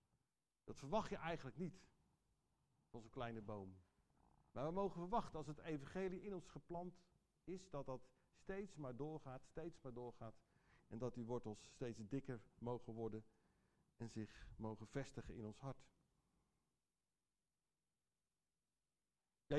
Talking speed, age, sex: 130 wpm, 50-69, male